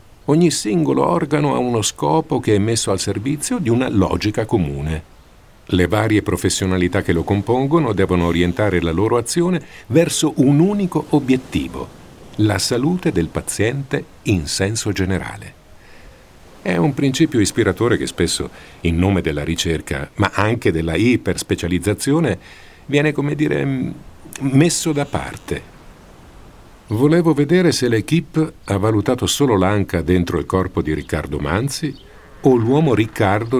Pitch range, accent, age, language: 85-135 Hz, native, 50-69, Italian